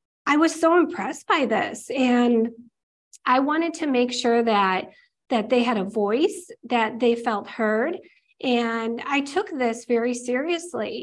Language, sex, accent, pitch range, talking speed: English, female, American, 230-290 Hz, 150 wpm